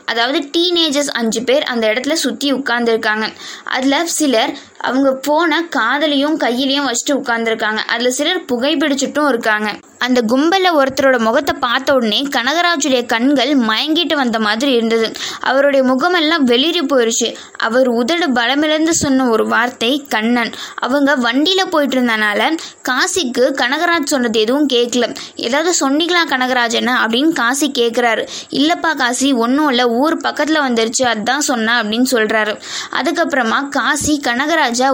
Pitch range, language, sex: 235-295 Hz, Tamil, female